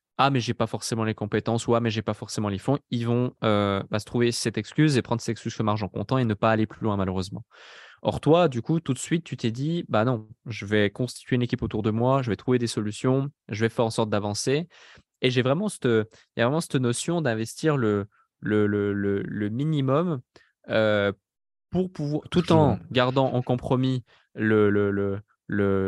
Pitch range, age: 110-135 Hz, 20-39